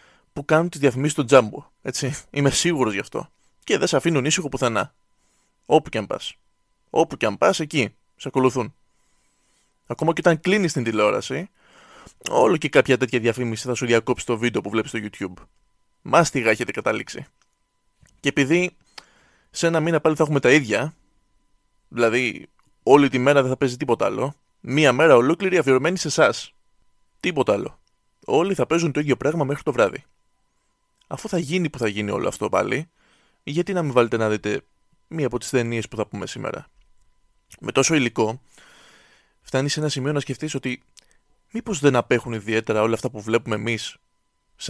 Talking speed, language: 175 wpm, Greek